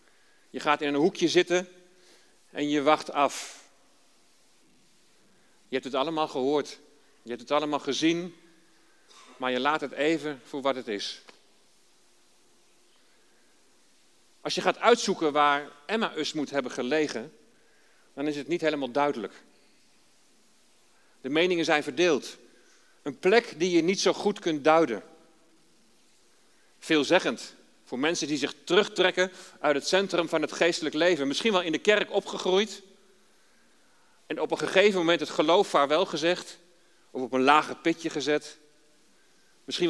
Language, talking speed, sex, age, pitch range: Dutch, 140 wpm, male, 40-59, 145-180 Hz